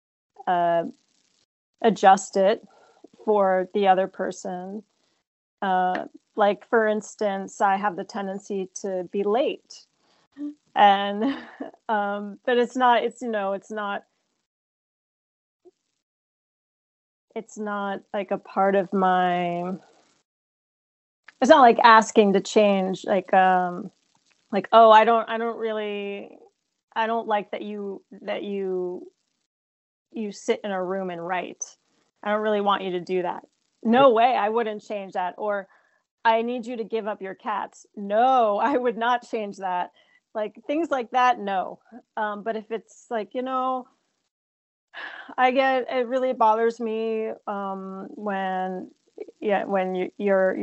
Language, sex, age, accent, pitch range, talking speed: English, female, 30-49, American, 190-230 Hz, 135 wpm